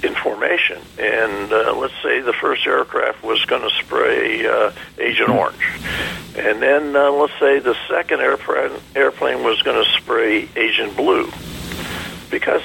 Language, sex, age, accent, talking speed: English, male, 60-79, American, 140 wpm